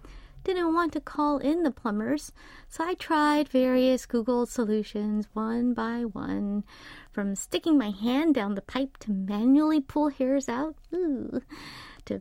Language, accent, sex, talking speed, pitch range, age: English, American, female, 145 wpm, 235-300 Hz, 30-49